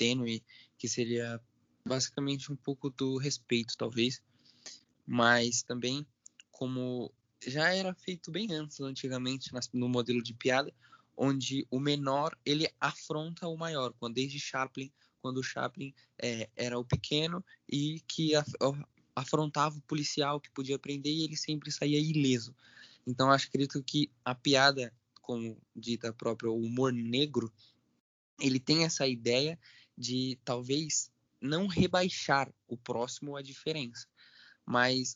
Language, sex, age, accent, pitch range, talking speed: Portuguese, male, 20-39, Brazilian, 125-150 Hz, 135 wpm